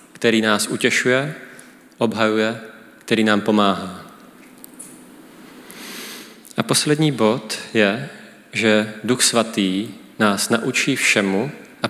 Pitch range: 100-115 Hz